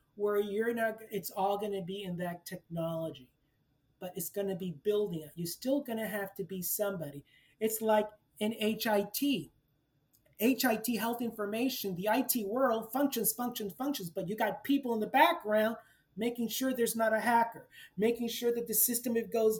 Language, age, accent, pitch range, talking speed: English, 30-49, American, 180-225 Hz, 170 wpm